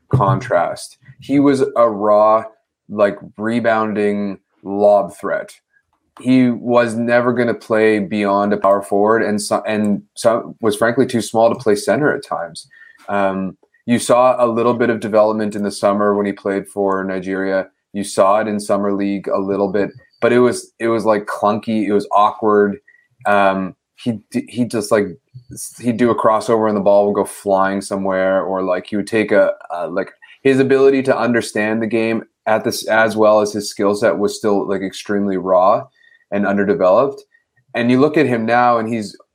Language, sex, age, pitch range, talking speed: English, male, 20-39, 100-120 Hz, 185 wpm